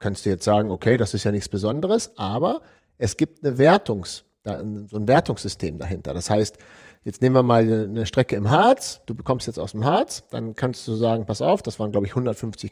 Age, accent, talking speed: 50-69, German, 215 wpm